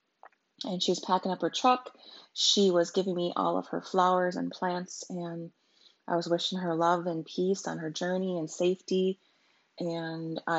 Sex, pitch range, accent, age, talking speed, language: female, 165-185 Hz, American, 30-49, 180 wpm, English